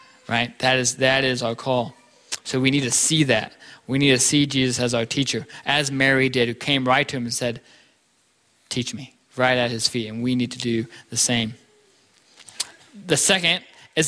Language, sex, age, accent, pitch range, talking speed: English, male, 20-39, American, 125-150 Hz, 200 wpm